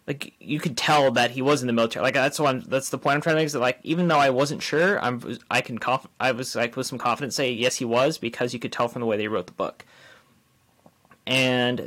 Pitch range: 120-140 Hz